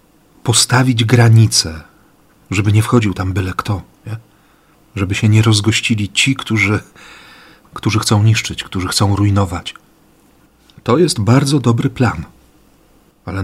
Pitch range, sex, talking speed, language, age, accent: 105-125 Hz, male, 115 wpm, Polish, 40-59, native